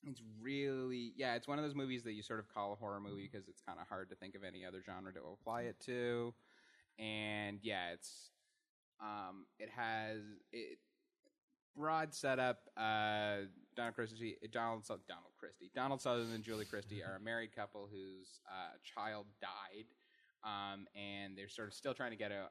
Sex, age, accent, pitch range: male, 20-39, American, 100-120 Hz